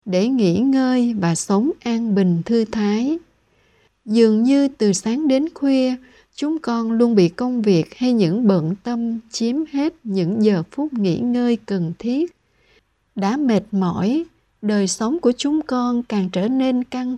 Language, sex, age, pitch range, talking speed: Vietnamese, female, 60-79, 200-260 Hz, 160 wpm